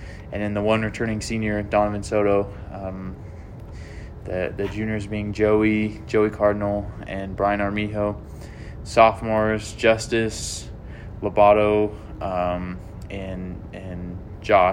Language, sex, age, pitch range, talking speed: English, male, 20-39, 95-110 Hz, 105 wpm